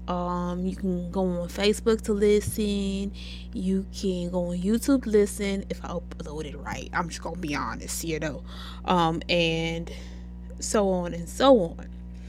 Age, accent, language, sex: 20-39, American, English, female